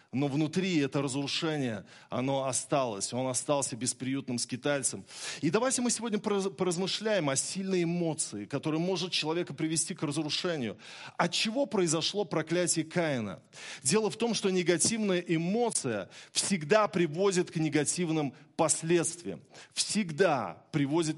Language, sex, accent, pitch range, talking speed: Russian, male, native, 140-180 Hz, 120 wpm